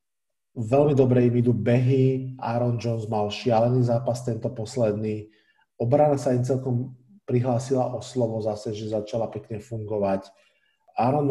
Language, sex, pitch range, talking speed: Slovak, male, 115-130 Hz, 135 wpm